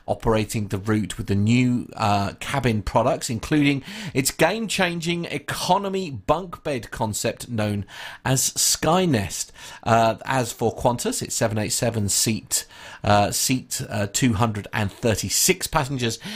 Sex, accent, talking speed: male, British, 115 wpm